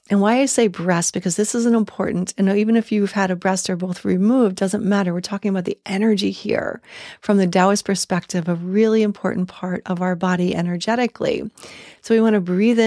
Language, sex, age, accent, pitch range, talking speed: English, female, 40-59, American, 185-210 Hz, 210 wpm